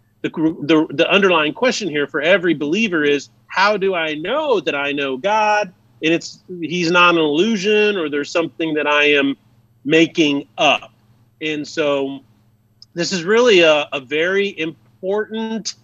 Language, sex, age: English, male, 40-59